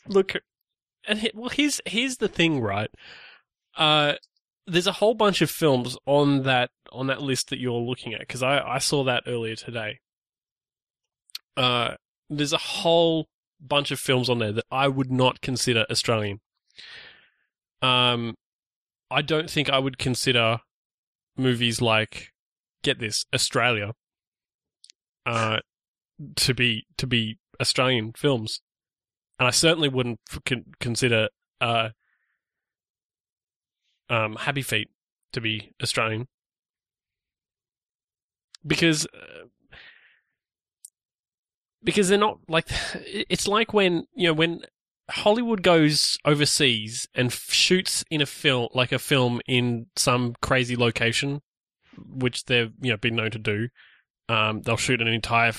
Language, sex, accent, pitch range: English, male, Australian, 115-150 Hz